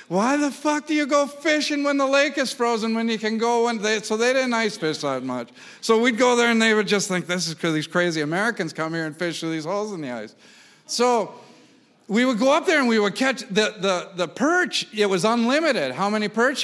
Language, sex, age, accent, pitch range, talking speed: English, male, 50-69, American, 175-240 Hz, 255 wpm